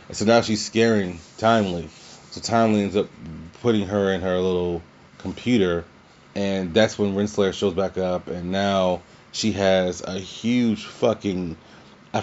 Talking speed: 145 wpm